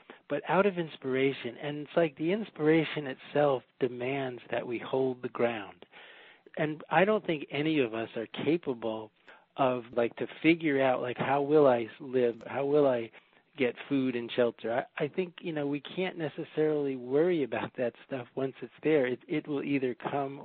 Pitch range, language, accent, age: 130-155 Hz, English, American, 40-59